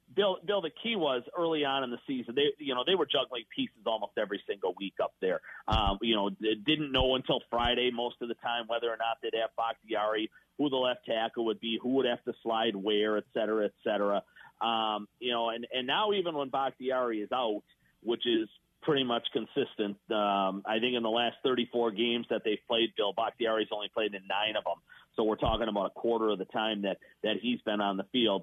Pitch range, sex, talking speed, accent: 110-135 Hz, male, 225 wpm, American